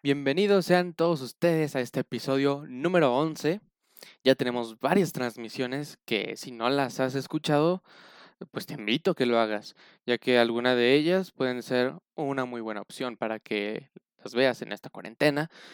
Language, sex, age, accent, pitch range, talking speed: Spanish, male, 20-39, Mexican, 120-150 Hz, 170 wpm